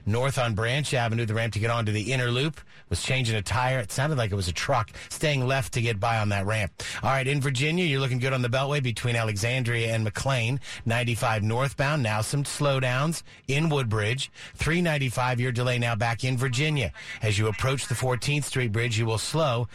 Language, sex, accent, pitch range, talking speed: English, male, American, 115-140 Hz, 210 wpm